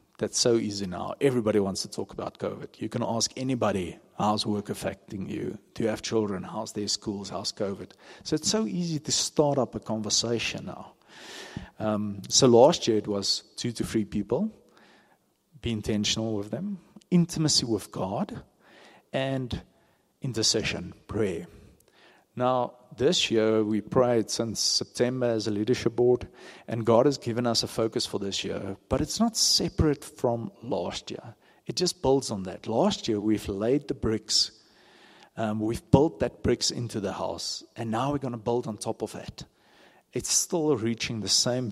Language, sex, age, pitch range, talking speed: English, male, 50-69, 105-125 Hz, 175 wpm